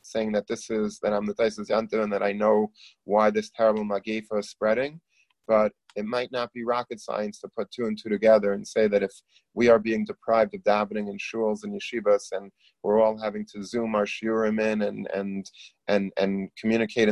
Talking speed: 205 wpm